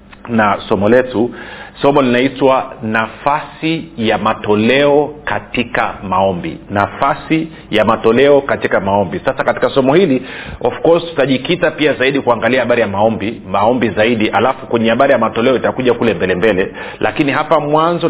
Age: 40-59